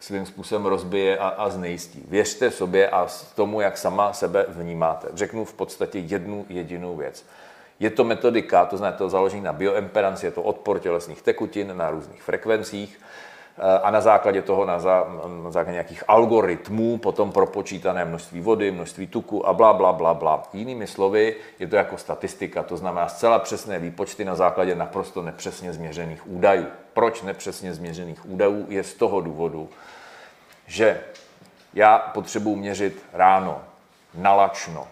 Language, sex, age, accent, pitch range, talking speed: Czech, male, 40-59, native, 85-100 Hz, 150 wpm